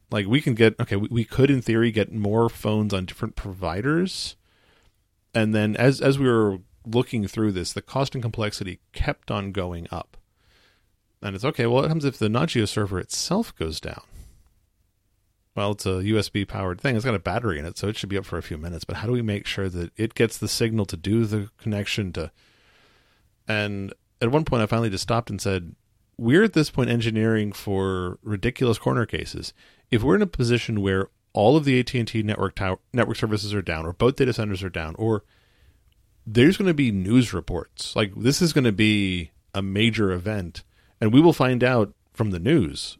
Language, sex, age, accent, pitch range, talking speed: English, male, 40-59, American, 95-115 Hz, 205 wpm